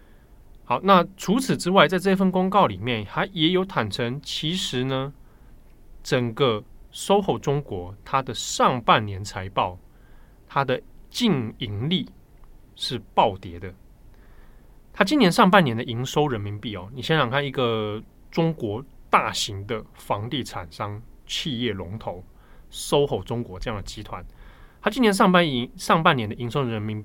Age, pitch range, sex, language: 20-39, 105-155 Hz, male, Chinese